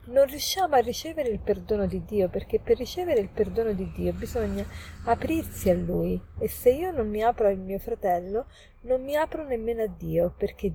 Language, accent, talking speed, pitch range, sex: Italian, native, 195 wpm, 175-245 Hz, female